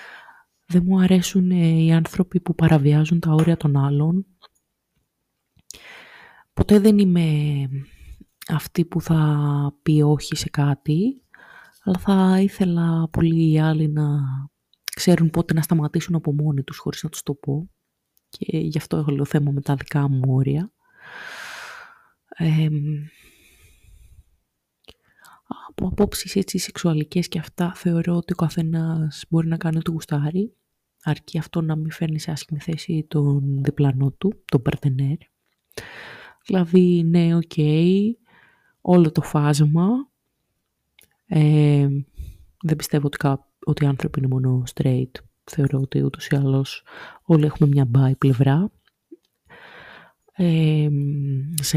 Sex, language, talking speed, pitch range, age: female, Greek, 125 wpm, 145-180 Hz, 20-39